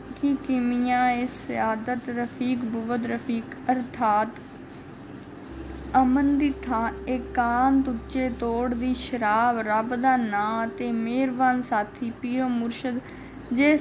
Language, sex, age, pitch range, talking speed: Punjabi, female, 20-39, 235-270 Hz, 105 wpm